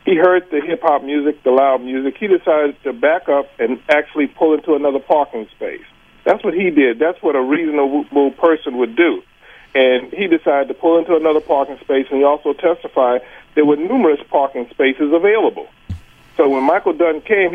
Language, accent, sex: English, American, male